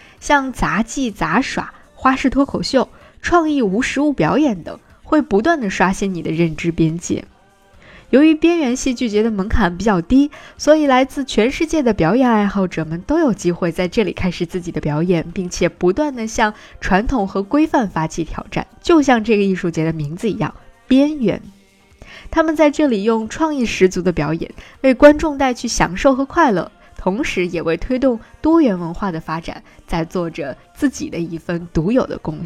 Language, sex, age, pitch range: Chinese, female, 20-39, 180-270 Hz